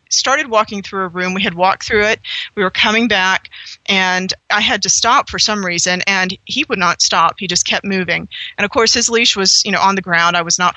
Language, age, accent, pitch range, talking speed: English, 40-59, American, 185-235 Hz, 250 wpm